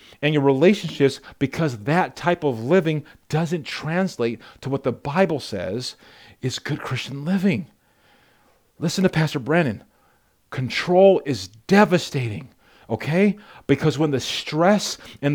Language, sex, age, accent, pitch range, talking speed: English, male, 40-59, American, 120-180 Hz, 125 wpm